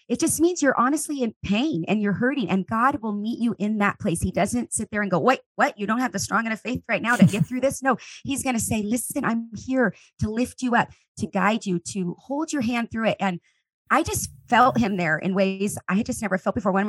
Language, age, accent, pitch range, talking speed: English, 30-49, American, 190-255 Hz, 270 wpm